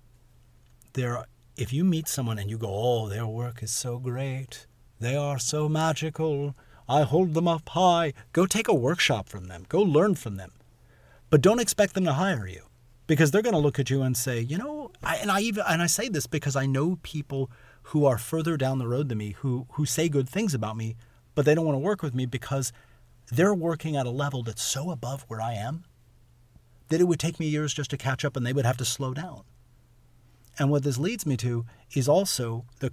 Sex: male